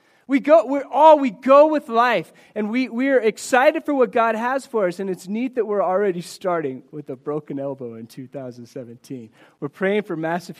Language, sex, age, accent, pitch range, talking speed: English, male, 30-49, American, 170-230 Hz, 200 wpm